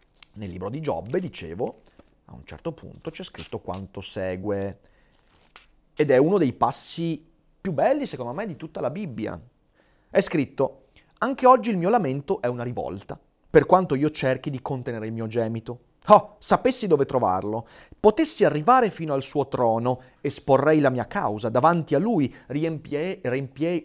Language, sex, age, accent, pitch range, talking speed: Italian, male, 30-49, native, 120-185 Hz, 165 wpm